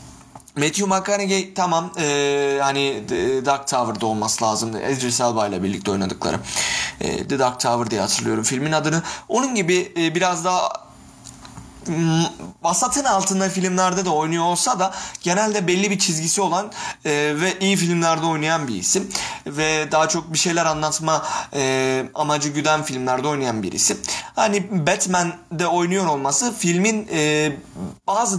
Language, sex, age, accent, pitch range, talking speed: Turkish, male, 30-49, native, 135-185 Hz, 140 wpm